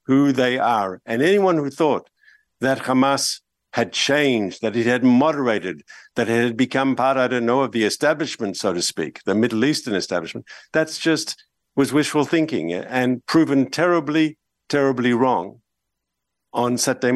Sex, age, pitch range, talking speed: male, 50-69, 125-150 Hz, 155 wpm